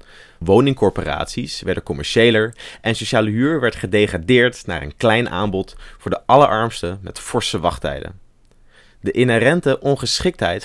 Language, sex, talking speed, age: Dutch, male, 120 wpm, 30-49